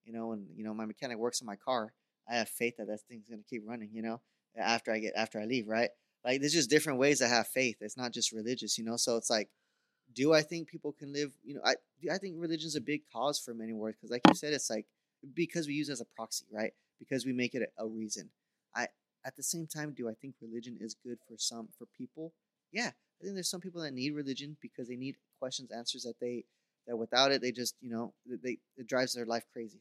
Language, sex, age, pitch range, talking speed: English, male, 20-39, 115-140 Hz, 260 wpm